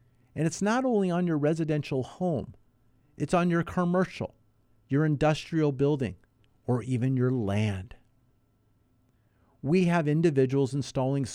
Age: 50-69